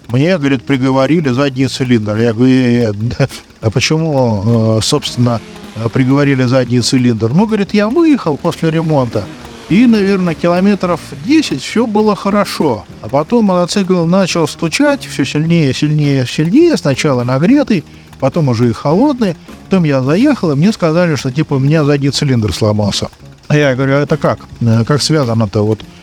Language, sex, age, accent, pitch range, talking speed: Russian, male, 50-69, native, 120-160 Hz, 150 wpm